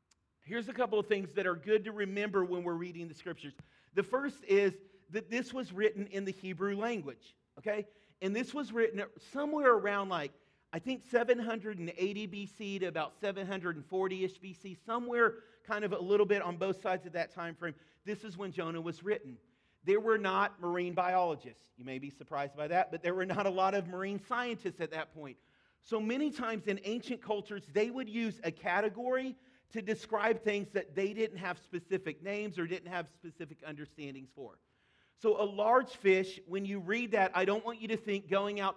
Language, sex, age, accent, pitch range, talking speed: English, male, 40-59, American, 175-215 Hz, 195 wpm